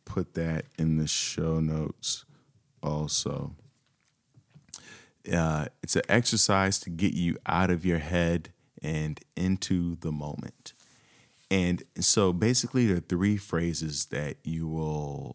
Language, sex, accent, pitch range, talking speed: English, male, American, 75-90 Hz, 125 wpm